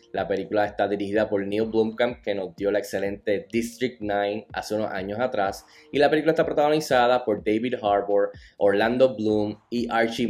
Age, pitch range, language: 10-29, 105-130 Hz, Spanish